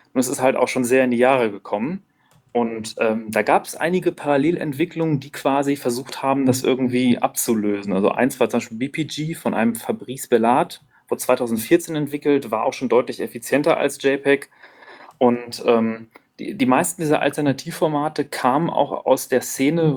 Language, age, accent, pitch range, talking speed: German, 30-49, German, 120-145 Hz, 170 wpm